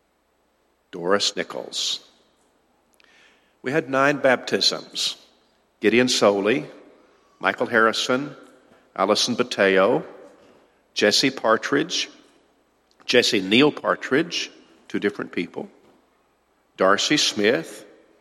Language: English